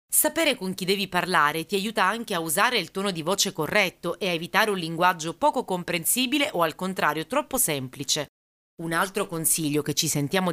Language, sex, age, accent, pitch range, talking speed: Italian, female, 30-49, native, 160-205 Hz, 190 wpm